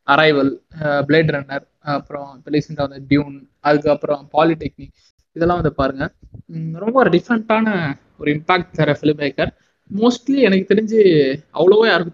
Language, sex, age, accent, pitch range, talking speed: Tamil, male, 20-39, native, 140-165 Hz, 130 wpm